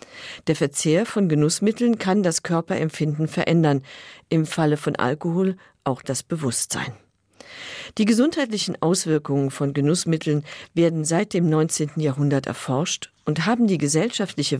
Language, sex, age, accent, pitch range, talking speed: German, female, 50-69, German, 140-185 Hz, 125 wpm